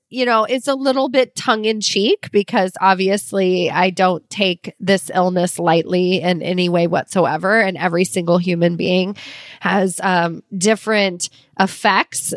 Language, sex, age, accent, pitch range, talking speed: English, female, 30-49, American, 185-225 Hz, 145 wpm